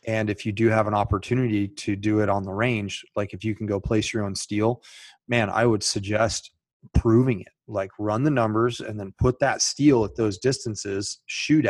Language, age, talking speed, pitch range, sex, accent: English, 30-49, 210 wpm, 100-115 Hz, male, American